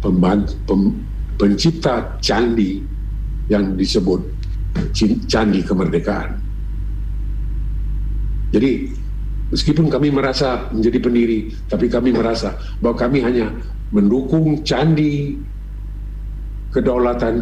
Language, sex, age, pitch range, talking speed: English, male, 50-69, 100-140 Hz, 80 wpm